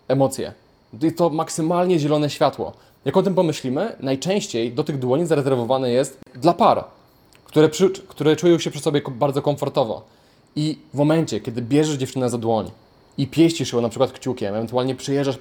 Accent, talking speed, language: native, 170 wpm, Polish